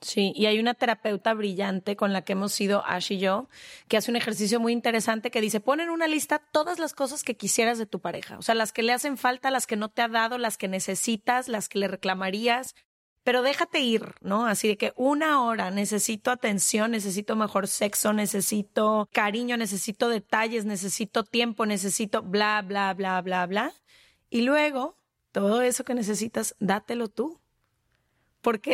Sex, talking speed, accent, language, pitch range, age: female, 185 wpm, Mexican, Spanish, 205-245 Hz, 30-49